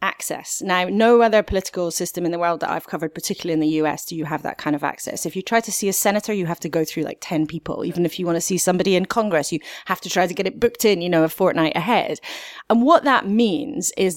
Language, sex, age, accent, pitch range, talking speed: English, female, 30-49, British, 165-210 Hz, 280 wpm